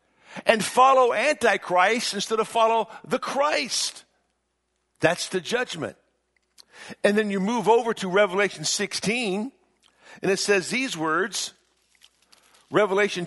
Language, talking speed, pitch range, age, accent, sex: English, 115 wpm, 150-215 Hz, 50-69, American, male